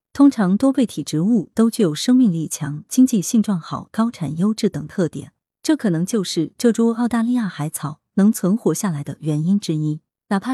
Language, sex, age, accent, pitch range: Chinese, female, 20-39, native, 155-230 Hz